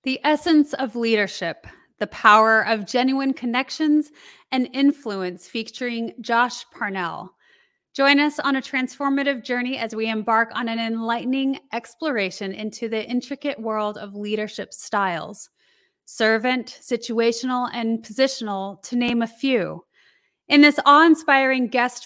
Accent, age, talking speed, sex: American, 30-49, 125 wpm, female